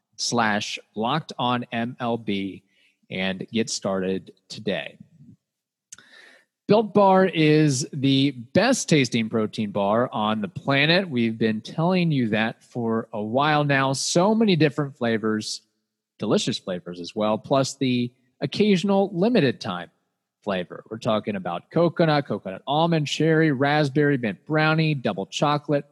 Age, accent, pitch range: 30-49, American, 110-150 Hz